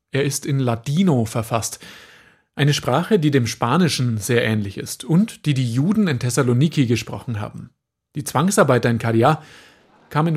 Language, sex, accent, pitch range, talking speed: German, male, German, 120-165 Hz, 150 wpm